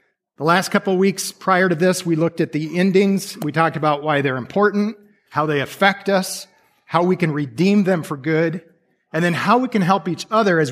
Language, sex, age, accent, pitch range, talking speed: English, male, 40-59, American, 140-180 Hz, 220 wpm